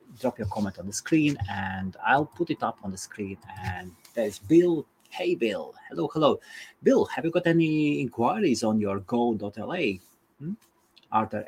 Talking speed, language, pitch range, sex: 175 wpm, English, 100-130 Hz, male